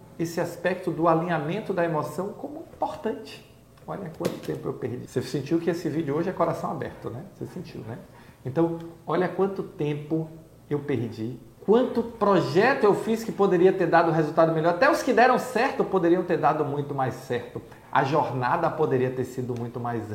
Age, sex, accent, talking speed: 50-69, male, Brazilian, 180 wpm